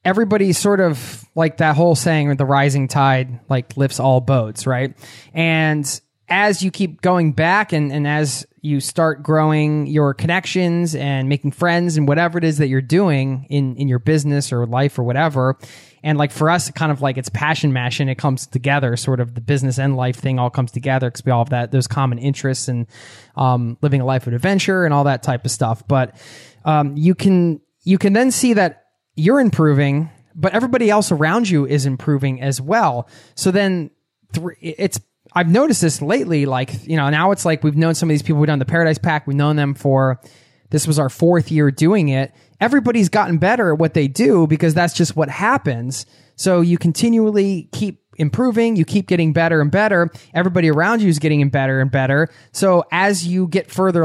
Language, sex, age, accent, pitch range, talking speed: English, male, 20-39, American, 135-175 Hz, 205 wpm